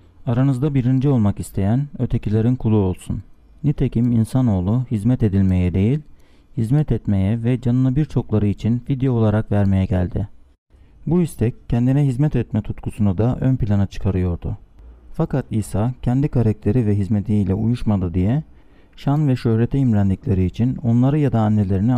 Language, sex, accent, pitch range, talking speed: Turkish, male, native, 100-130 Hz, 135 wpm